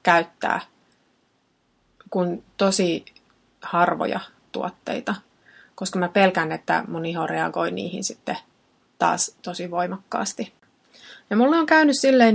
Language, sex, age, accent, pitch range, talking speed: Finnish, female, 30-49, native, 180-225 Hz, 105 wpm